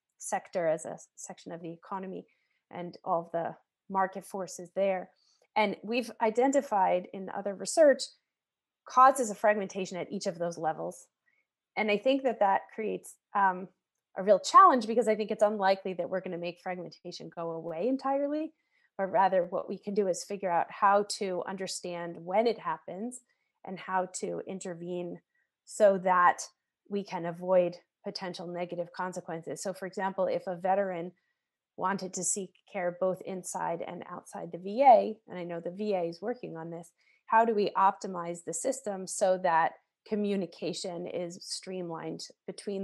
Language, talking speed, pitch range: English, 165 wpm, 175-210 Hz